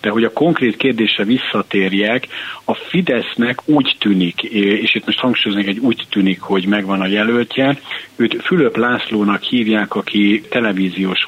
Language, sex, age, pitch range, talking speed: Hungarian, male, 50-69, 100-110 Hz, 145 wpm